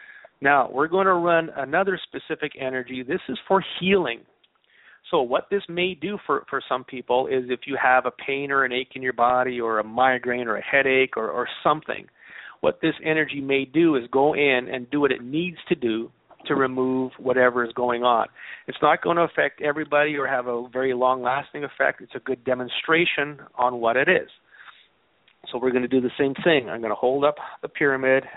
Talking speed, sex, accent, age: 205 wpm, male, American, 40-59